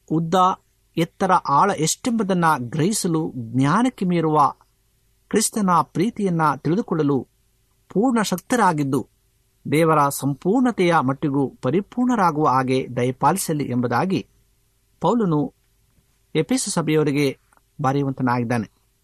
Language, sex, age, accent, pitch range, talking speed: Kannada, male, 60-79, native, 130-185 Hz, 75 wpm